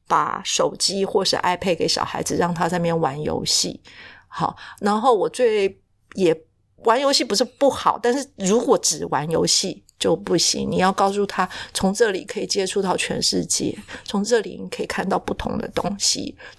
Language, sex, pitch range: Chinese, female, 175-245 Hz